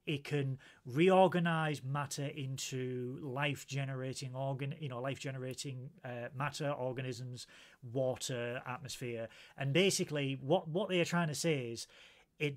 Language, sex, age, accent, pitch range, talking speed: English, male, 30-49, British, 125-160 Hz, 135 wpm